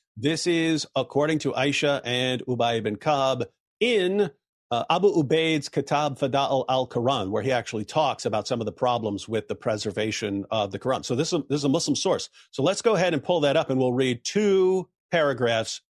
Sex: male